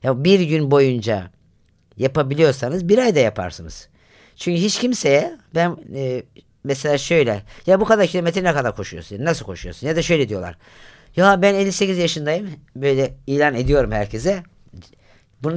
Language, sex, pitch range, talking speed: Turkish, female, 120-180 Hz, 145 wpm